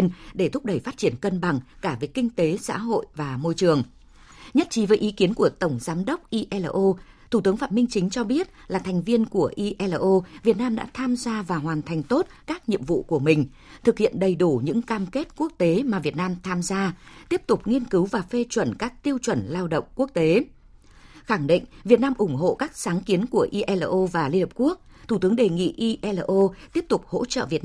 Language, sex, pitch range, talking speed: Vietnamese, female, 170-235 Hz, 230 wpm